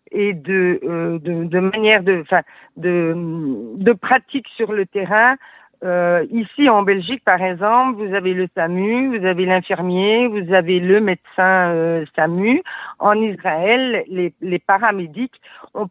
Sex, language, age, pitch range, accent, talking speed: female, French, 50-69, 175-215 Hz, French, 145 wpm